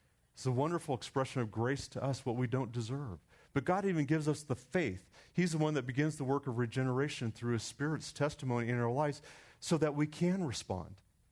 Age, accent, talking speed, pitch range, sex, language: 40-59, American, 210 wpm, 110-145 Hz, male, English